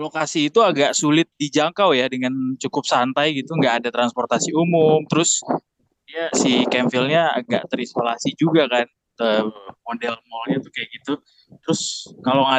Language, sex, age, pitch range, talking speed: Indonesian, male, 20-39, 130-165 Hz, 145 wpm